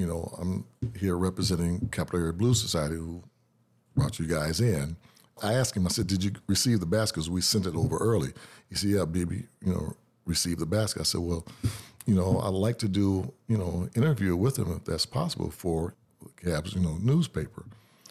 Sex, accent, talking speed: male, American, 200 wpm